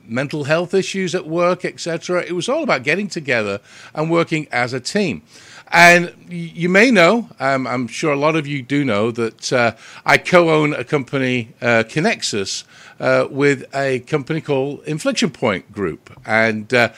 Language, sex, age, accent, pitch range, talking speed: English, male, 50-69, British, 120-165 Hz, 165 wpm